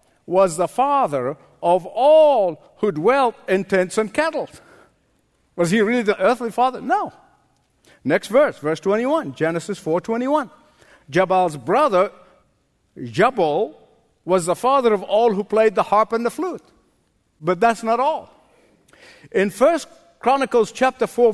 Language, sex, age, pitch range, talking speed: English, male, 50-69, 200-270 Hz, 140 wpm